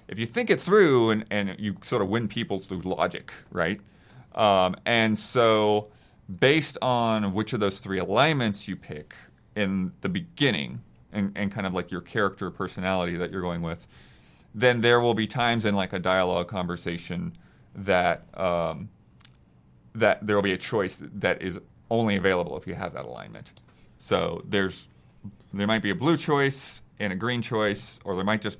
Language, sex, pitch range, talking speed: English, male, 95-115 Hz, 180 wpm